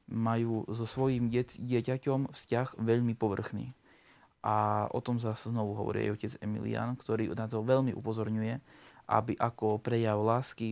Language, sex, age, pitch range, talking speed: Slovak, male, 20-39, 110-120 Hz, 140 wpm